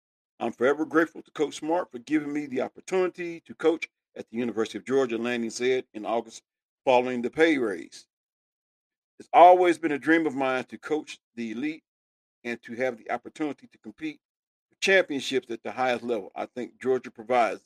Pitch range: 120-165 Hz